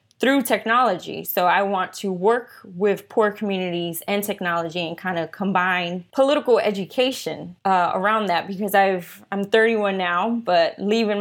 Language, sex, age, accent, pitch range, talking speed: English, female, 20-39, American, 180-220 Hz, 160 wpm